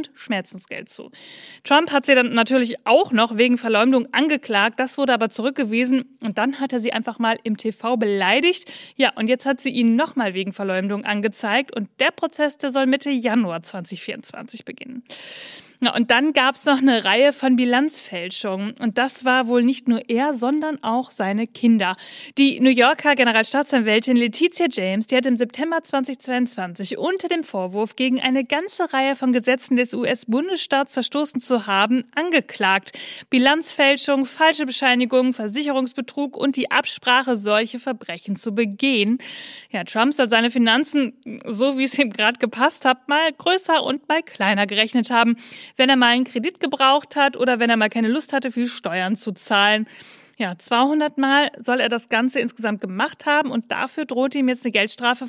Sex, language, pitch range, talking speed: female, German, 225-275 Hz, 170 wpm